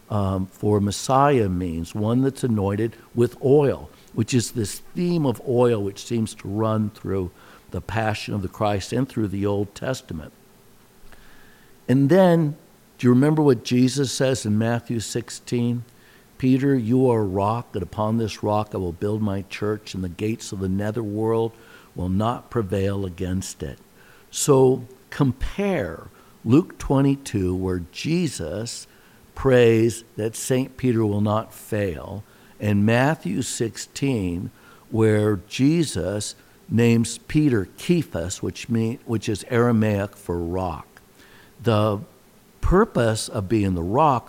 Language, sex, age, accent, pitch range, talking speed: English, male, 60-79, American, 100-130 Hz, 135 wpm